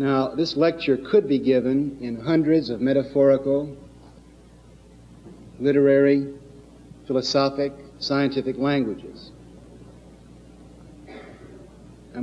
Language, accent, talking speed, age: English, American, 75 wpm, 60-79